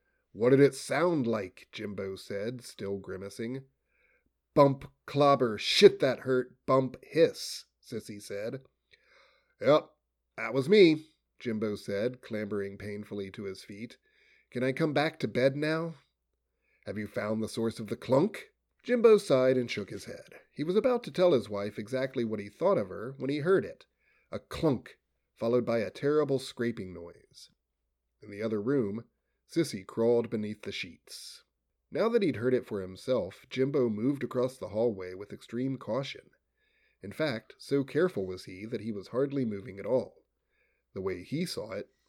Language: English